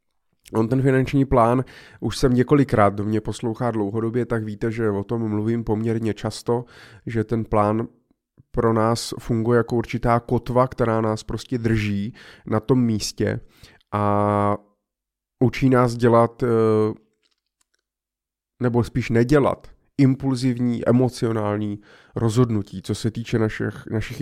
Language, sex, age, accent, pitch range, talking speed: Czech, male, 20-39, native, 110-125 Hz, 120 wpm